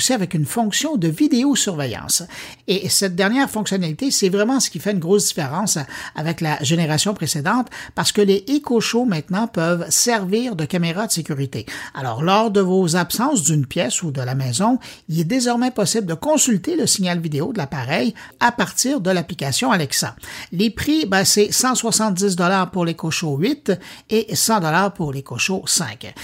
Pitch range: 165-230 Hz